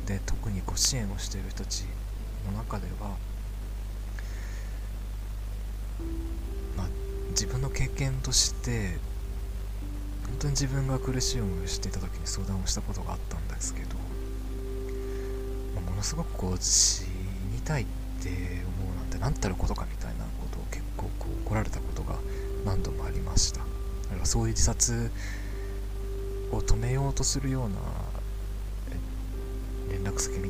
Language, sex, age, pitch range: Japanese, male, 40-59, 90-105 Hz